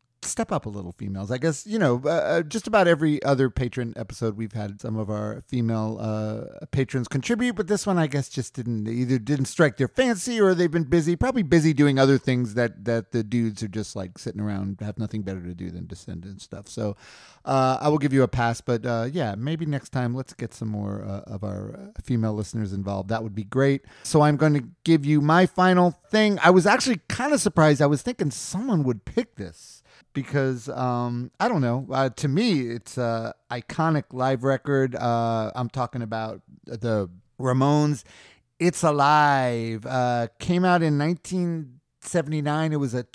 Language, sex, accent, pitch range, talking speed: English, male, American, 115-155 Hz, 195 wpm